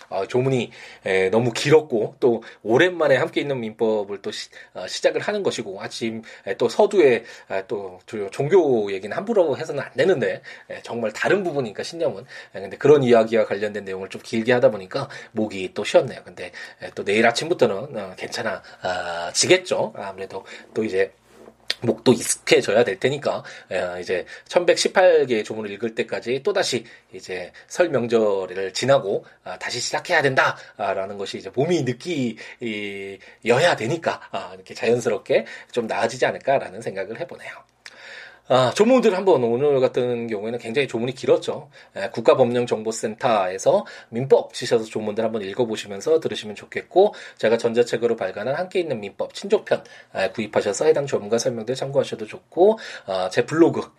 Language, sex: Korean, male